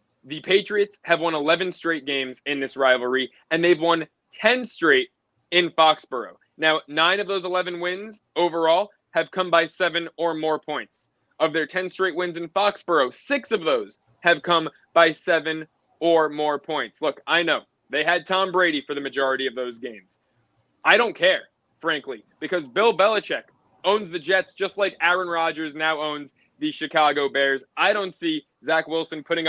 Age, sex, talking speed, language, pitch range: 20-39, male, 175 wpm, English, 155-190 Hz